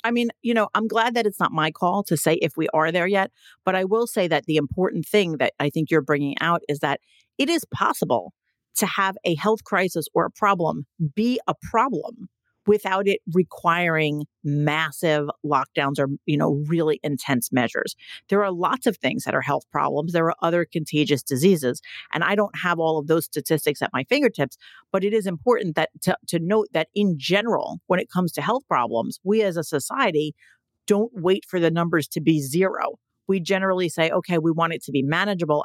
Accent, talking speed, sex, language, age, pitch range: American, 205 wpm, female, English, 50-69, 155-195 Hz